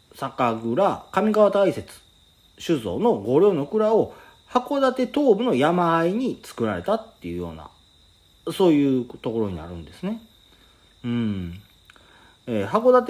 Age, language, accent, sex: 40-59, Japanese, native, male